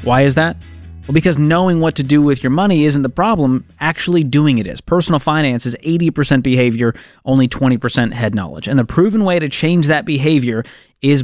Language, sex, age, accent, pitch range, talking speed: English, male, 30-49, American, 125-155 Hz, 200 wpm